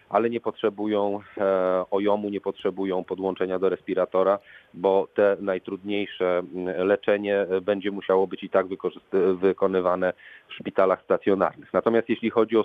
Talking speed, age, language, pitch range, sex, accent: 125 wpm, 40-59, Polish, 95-105 Hz, male, native